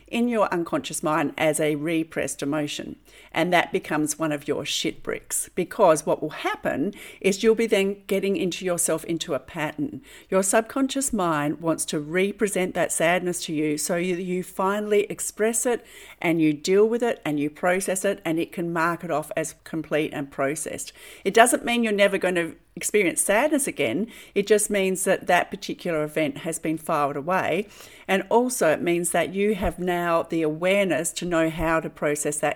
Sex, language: female, English